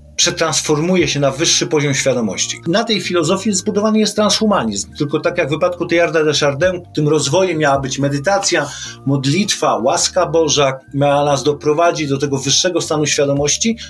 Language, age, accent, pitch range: Polish, 40-59, native, 135-165 Hz